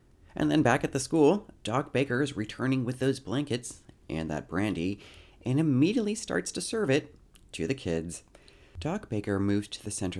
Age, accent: 30-49, American